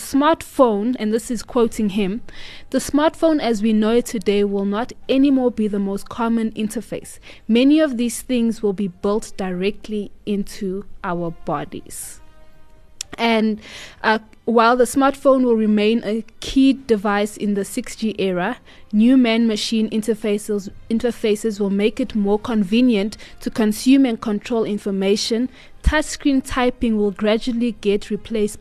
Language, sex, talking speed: English, female, 140 wpm